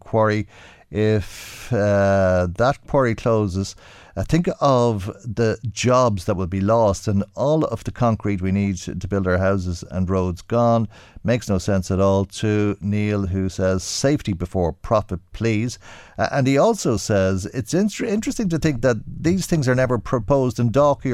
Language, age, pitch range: English, 50-69, 95-120 Hz